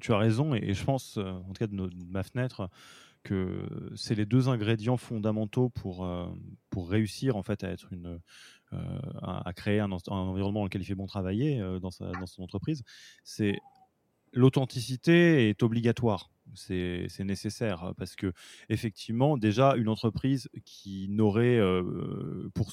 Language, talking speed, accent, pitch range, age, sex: French, 150 wpm, French, 100-130 Hz, 20-39, male